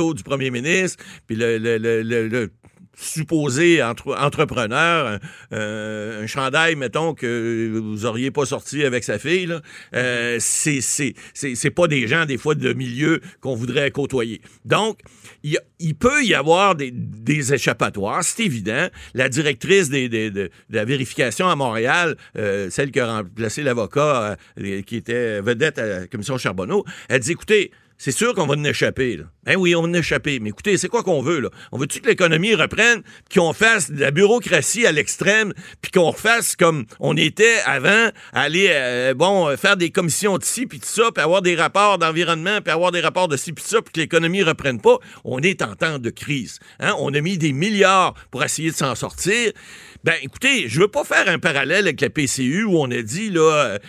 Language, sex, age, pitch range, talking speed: French, male, 60-79, 125-180 Hz, 190 wpm